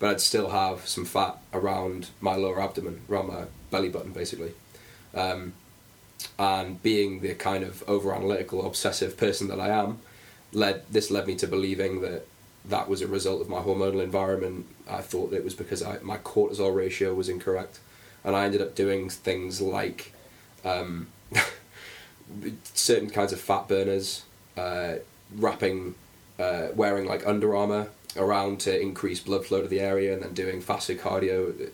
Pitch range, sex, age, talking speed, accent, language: 95-105 Hz, male, 10-29, 165 wpm, British, English